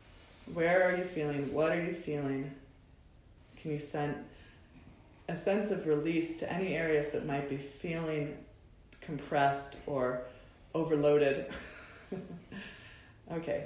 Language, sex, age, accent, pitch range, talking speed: English, female, 30-49, American, 145-180 Hz, 115 wpm